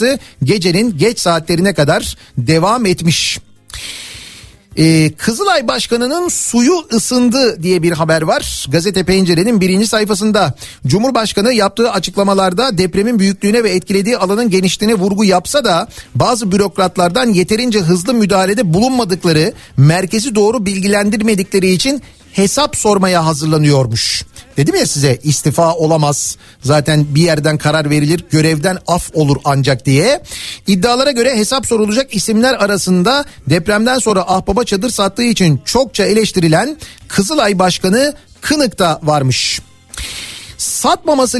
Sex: male